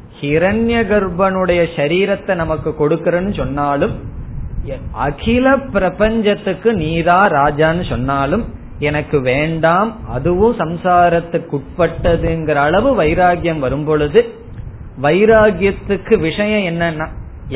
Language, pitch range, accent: Tamil, 155-200 Hz, native